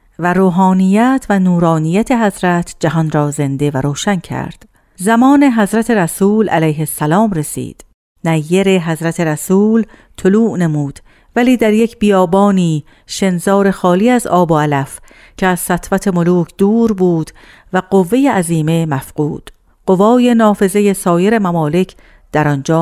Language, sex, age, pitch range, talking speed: Persian, female, 50-69, 155-210 Hz, 125 wpm